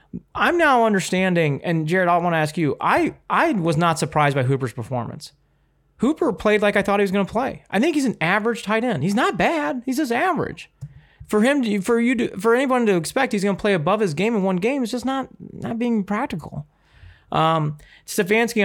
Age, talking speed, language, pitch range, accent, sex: 30-49, 220 wpm, English, 125-185 Hz, American, male